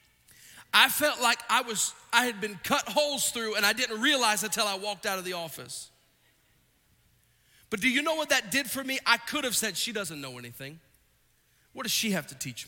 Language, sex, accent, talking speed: English, male, American, 215 wpm